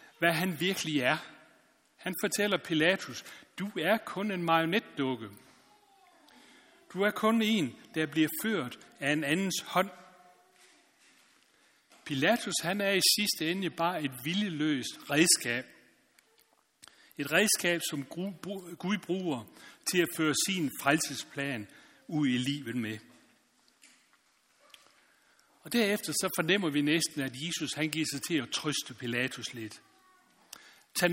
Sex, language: male, Danish